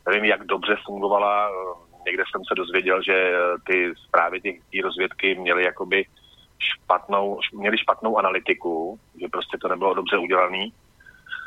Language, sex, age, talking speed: Slovak, male, 30-49, 130 wpm